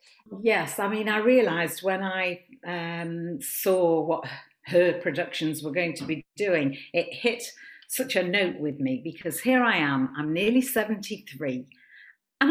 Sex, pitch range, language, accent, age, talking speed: female, 165-245 Hz, English, British, 50-69, 155 wpm